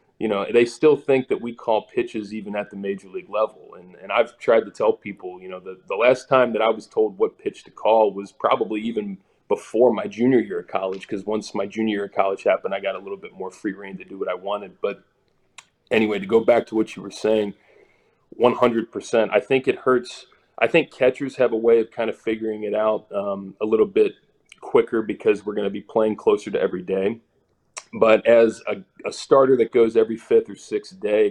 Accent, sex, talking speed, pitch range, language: American, male, 230 wpm, 100-145 Hz, English